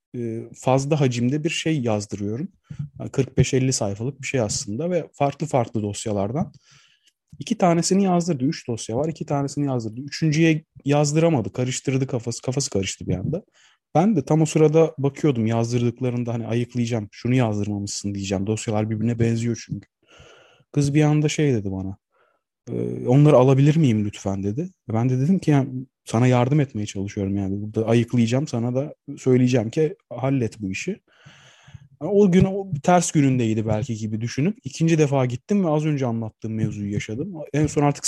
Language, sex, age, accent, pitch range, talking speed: Turkish, male, 30-49, native, 115-150 Hz, 155 wpm